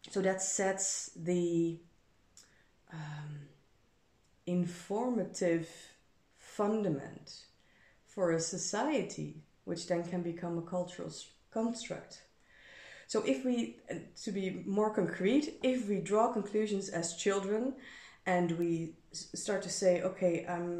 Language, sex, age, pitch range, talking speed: Dutch, female, 30-49, 170-200 Hz, 105 wpm